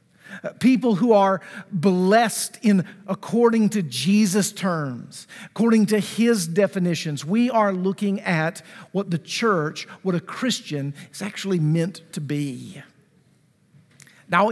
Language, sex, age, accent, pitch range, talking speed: English, male, 50-69, American, 180-230 Hz, 120 wpm